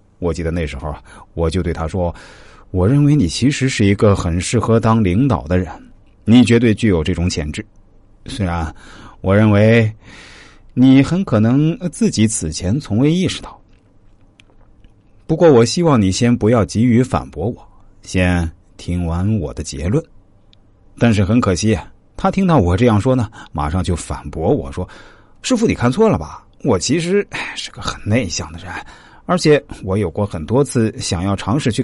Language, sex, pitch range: Chinese, male, 95-135 Hz